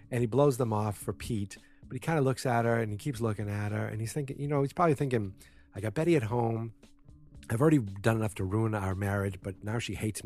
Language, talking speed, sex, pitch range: English, 265 wpm, male, 100-130 Hz